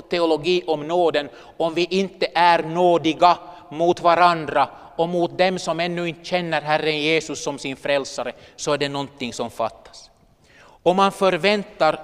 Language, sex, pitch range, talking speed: Swedish, male, 150-185 Hz, 155 wpm